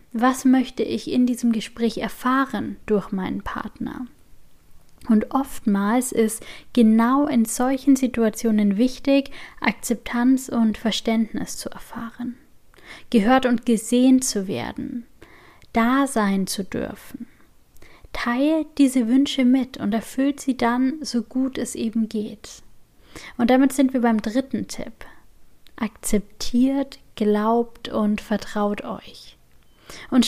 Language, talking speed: German, 115 wpm